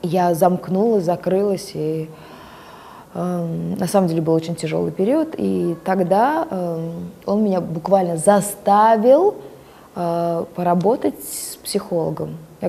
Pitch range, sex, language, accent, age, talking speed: 170-205 Hz, female, Russian, native, 20-39, 115 wpm